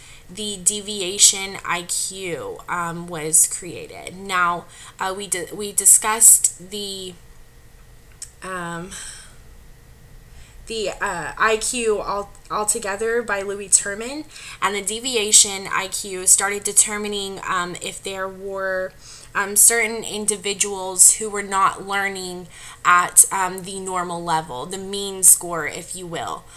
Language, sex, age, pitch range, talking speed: English, female, 20-39, 170-200 Hz, 115 wpm